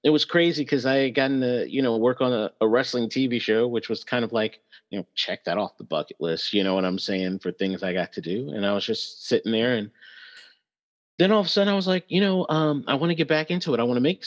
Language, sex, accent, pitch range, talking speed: English, male, American, 105-130 Hz, 295 wpm